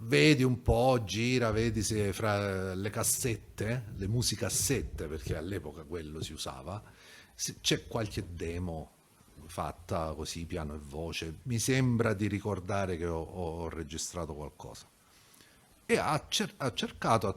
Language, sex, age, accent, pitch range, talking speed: Italian, male, 40-59, native, 85-115 Hz, 135 wpm